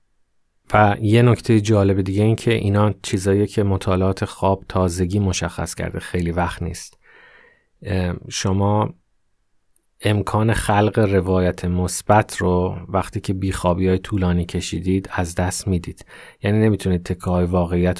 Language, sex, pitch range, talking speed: Persian, male, 90-100 Hz, 125 wpm